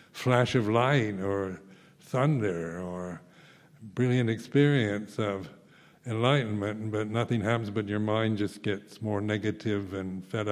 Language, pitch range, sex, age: English, 105-130 Hz, male, 60-79